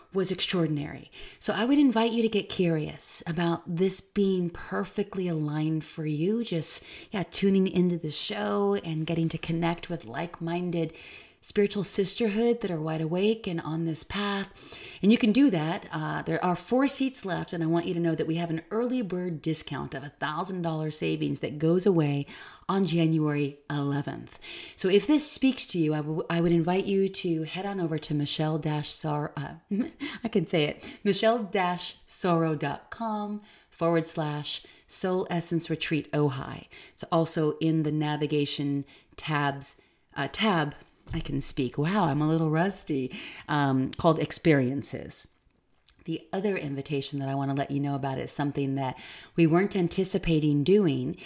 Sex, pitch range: female, 150-195 Hz